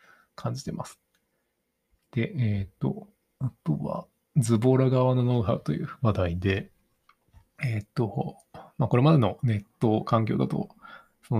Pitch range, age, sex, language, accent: 100-130 Hz, 20-39, male, Japanese, native